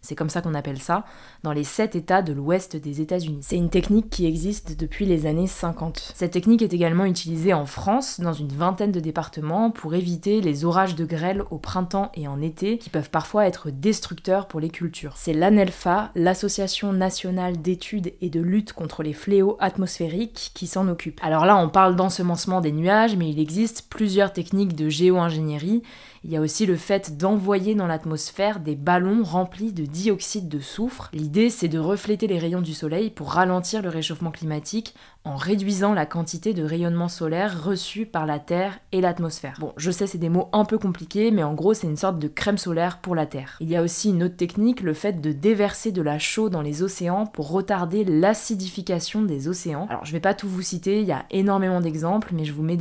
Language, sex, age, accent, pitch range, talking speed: French, female, 20-39, French, 160-200 Hz, 210 wpm